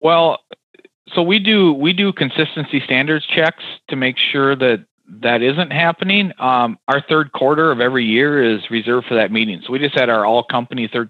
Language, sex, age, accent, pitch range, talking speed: English, male, 40-59, American, 115-150 Hz, 195 wpm